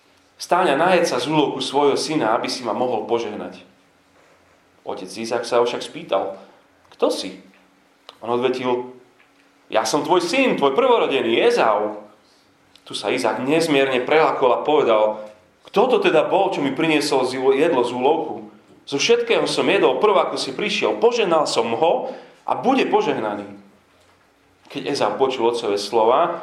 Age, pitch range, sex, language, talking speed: 30-49, 100-160 Hz, male, Slovak, 145 wpm